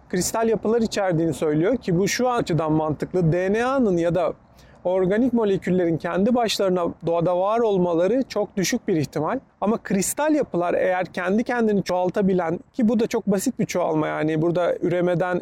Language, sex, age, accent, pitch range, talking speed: Turkish, male, 40-59, native, 180-220 Hz, 155 wpm